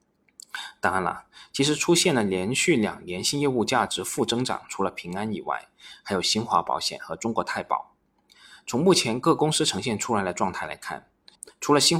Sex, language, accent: male, Chinese, native